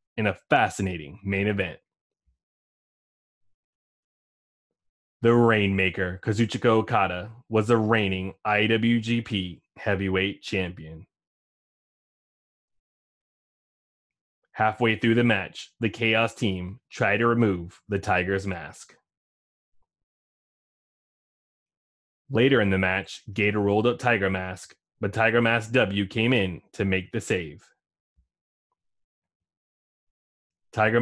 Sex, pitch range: male, 90-115 Hz